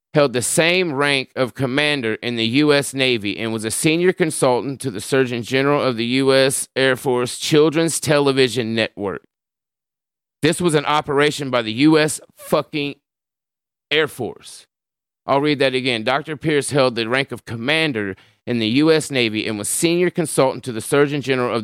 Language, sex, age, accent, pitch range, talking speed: English, male, 30-49, American, 115-150 Hz, 170 wpm